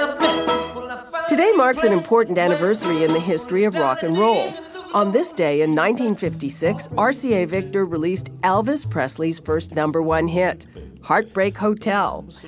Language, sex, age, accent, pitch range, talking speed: English, female, 50-69, American, 160-215 Hz, 135 wpm